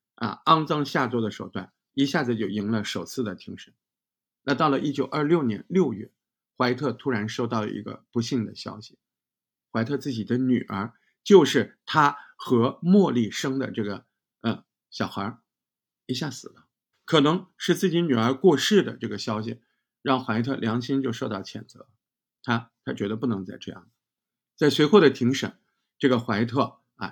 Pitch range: 110-140 Hz